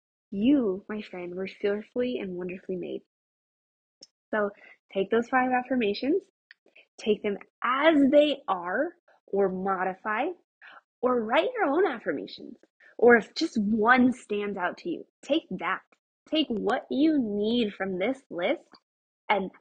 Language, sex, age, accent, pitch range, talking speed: English, female, 20-39, American, 195-260 Hz, 130 wpm